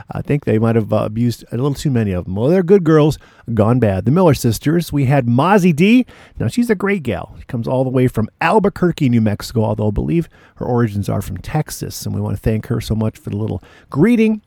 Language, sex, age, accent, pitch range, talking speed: English, male, 40-59, American, 110-145 Hz, 250 wpm